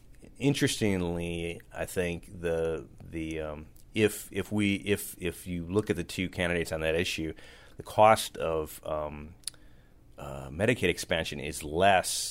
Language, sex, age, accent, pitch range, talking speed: English, male, 30-49, American, 75-90 Hz, 140 wpm